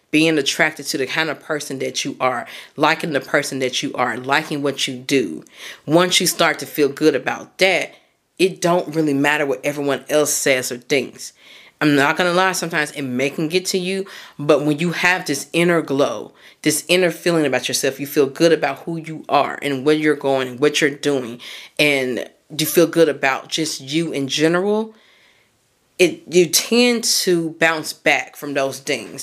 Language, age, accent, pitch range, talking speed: English, 30-49, American, 140-165 Hz, 195 wpm